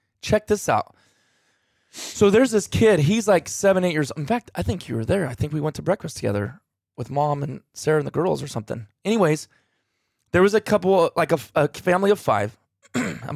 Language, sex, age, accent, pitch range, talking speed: English, male, 20-39, American, 130-185 Hz, 210 wpm